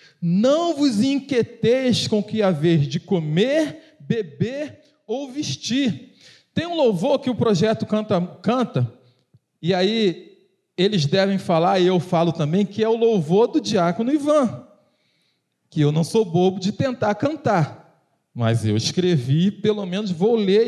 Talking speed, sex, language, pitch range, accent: 145 wpm, male, Portuguese, 160-250 Hz, Brazilian